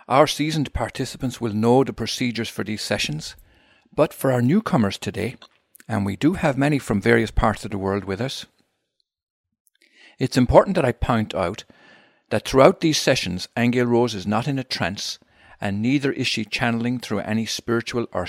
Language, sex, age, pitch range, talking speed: English, male, 50-69, 100-125 Hz, 175 wpm